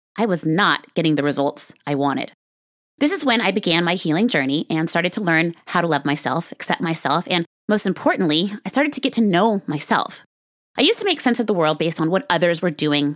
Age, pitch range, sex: 30-49, 160-245 Hz, female